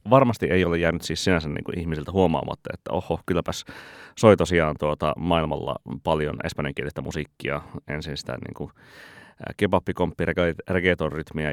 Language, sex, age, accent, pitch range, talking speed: Finnish, male, 30-49, native, 70-90 Hz, 140 wpm